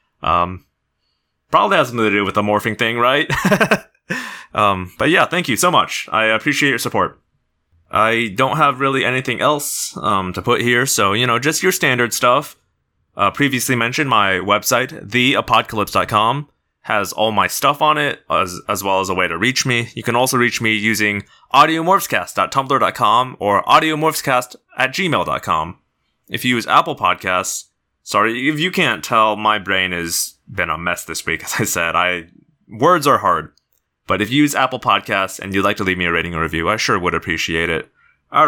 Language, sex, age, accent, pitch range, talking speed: English, male, 20-39, American, 90-130 Hz, 185 wpm